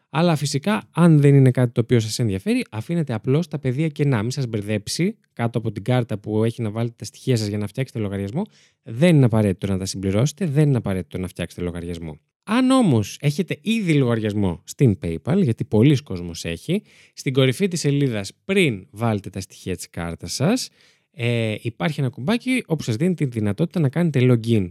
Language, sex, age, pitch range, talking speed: Greek, male, 20-39, 100-150 Hz, 195 wpm